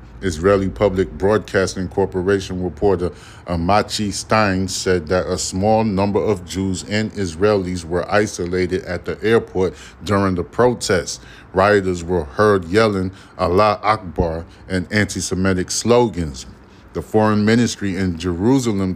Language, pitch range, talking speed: English, 90-105 Hz, 120 wpm